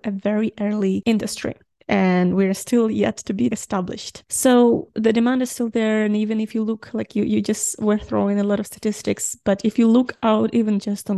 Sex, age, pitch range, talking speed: female, 20-39, 200-225 Hz, 215 wpm